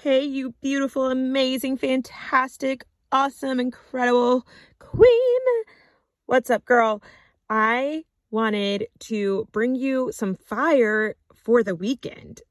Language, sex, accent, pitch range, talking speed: English, female, American, 205-265 Hz, 100 wpm